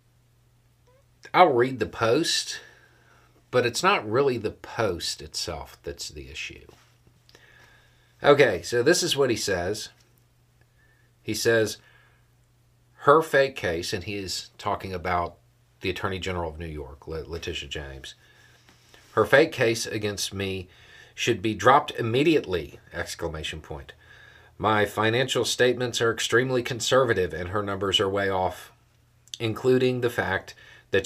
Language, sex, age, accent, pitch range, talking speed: English, male, 40-59, American, 95-120 Hz, 130 wpm